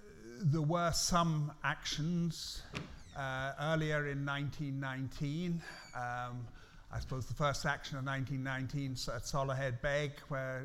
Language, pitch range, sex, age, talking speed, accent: English, 135-160 Hz, male, 50-69, 115 wpm, British